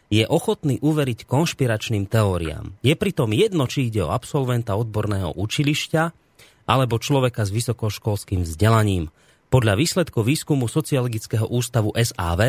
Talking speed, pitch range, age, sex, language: 120 wpm, 105-145 Hz, 30-49, male, Slovak